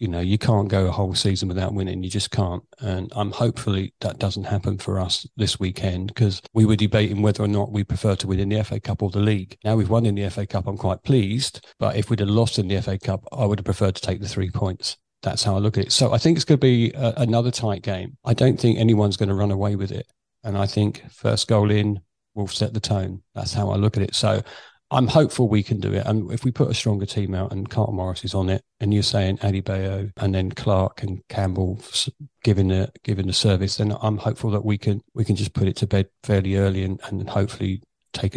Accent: British